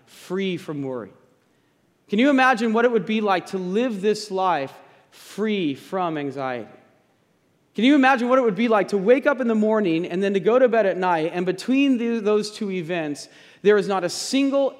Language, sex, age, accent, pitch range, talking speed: English, male, 30-49, American, 165-230 Hz, 205 wpm